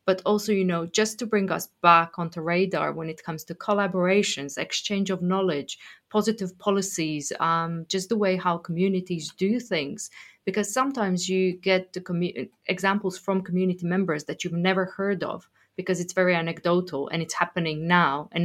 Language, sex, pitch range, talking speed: English, female, 165-195 Hz, 170 wpm